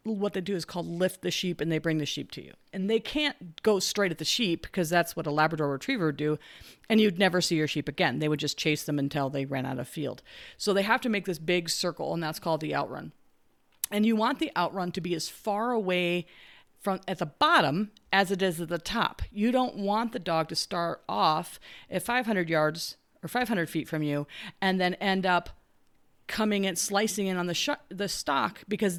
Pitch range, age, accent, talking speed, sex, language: 165-220 Hz, 40-59, American, 230 wpm, female, English